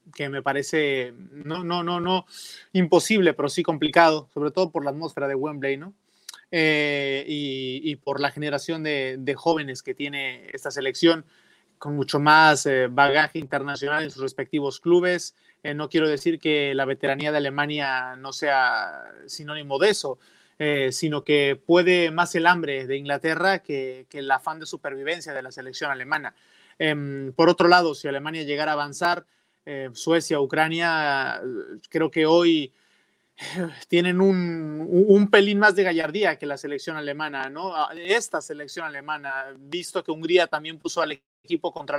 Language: Spanish